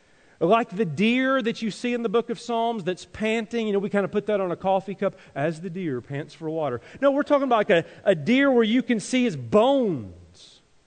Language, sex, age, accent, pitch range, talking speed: English, male, 40-59, American, 130-180 Hz, 245 wpm